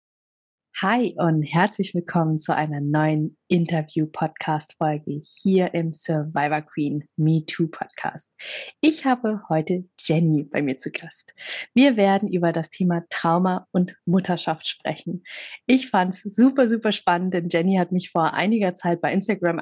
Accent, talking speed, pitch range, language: German, 145 wpm, 170-225 Hz, German